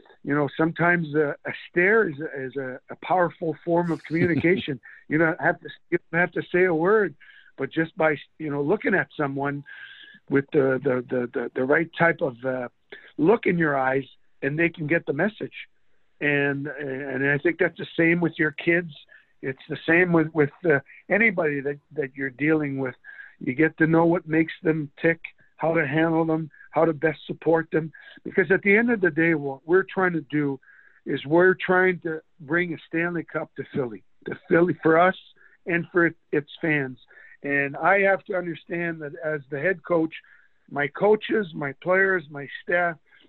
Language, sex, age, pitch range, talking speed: English, male, 50-69, 145-170 Hz, 195 wpm